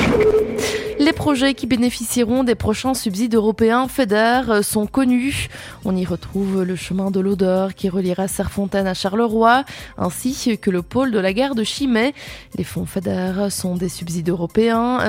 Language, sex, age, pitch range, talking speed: French, female, 20-39, 190-245 Hz, 155 wpm